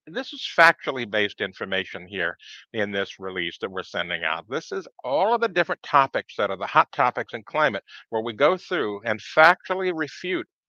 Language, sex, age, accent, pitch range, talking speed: English, male, 50-69, American, 105-145 Hz, 190 wpm